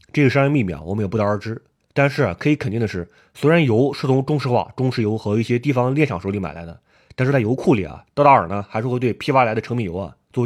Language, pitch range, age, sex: Chinese, 105-145 Hz, 20-39, male